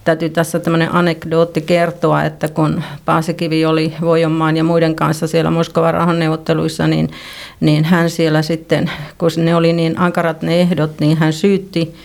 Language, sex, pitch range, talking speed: Finnish, female, 160-180 Hz, 155 wpm